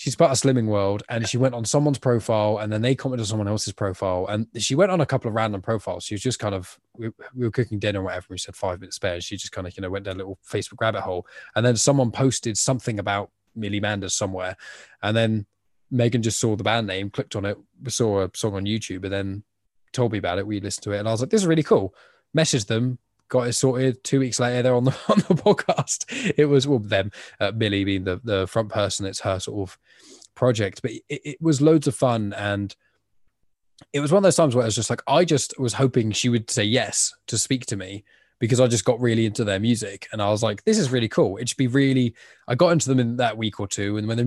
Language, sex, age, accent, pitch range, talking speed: English, male, 10-29, British, 100-130 Hz, 265 wpm